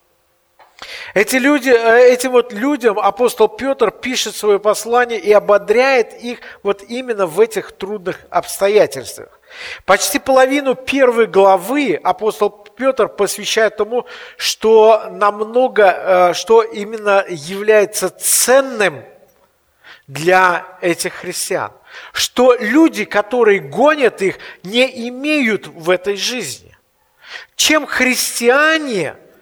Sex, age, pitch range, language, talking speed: male, 50-69, 200-260 Hz, Russian, 95 wpm